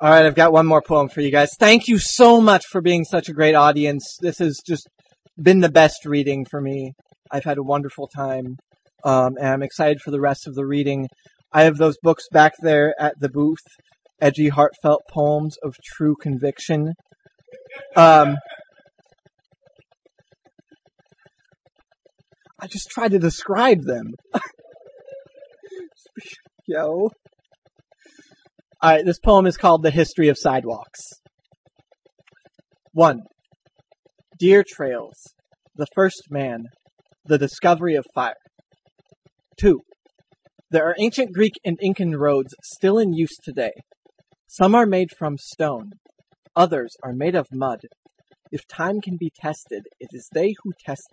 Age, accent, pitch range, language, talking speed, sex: 20-39, American, 145-195 Hz, English, 140 wpm, male